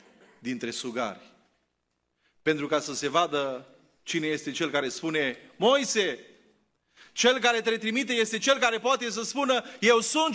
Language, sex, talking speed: Romanian, male, 145 wpm